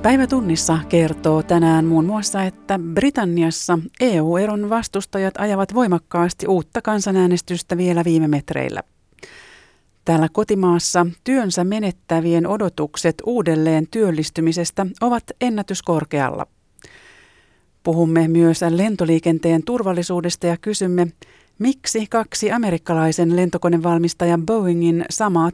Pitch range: 165-200 Hz